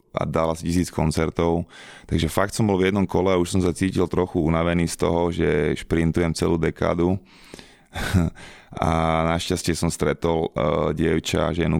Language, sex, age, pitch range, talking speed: Slovak, male, 30-49, 80-85 Hz, 160 wpm